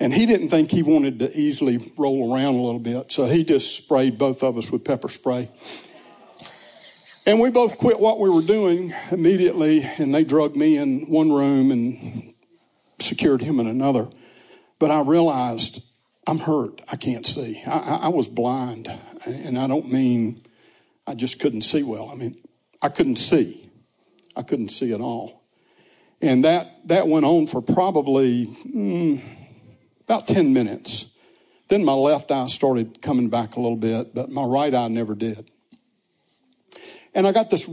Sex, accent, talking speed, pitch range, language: male, American, 170 wpm, 120-170 Hz, English